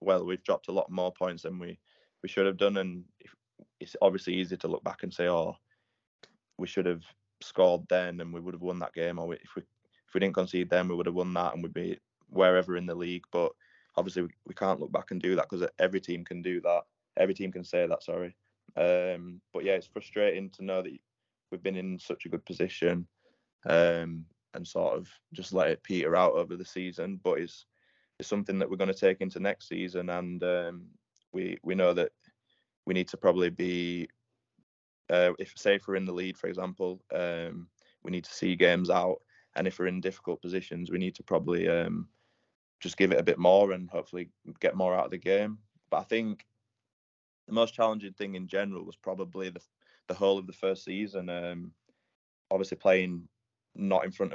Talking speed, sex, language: 215 wpm, male, English